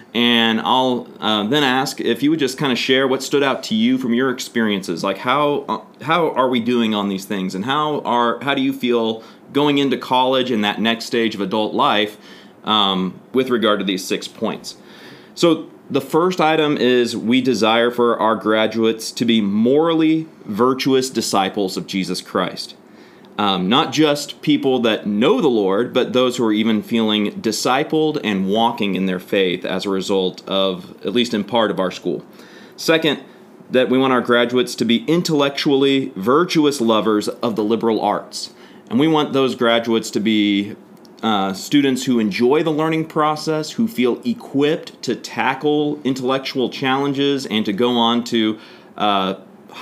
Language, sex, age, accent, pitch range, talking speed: English, male, 30-49, American, 110-140 Hz, 175 wpm